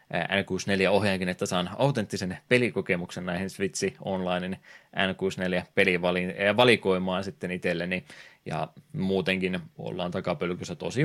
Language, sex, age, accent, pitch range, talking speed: Finnish, male, 20-39, native, 90-105 Hz, 110 wpm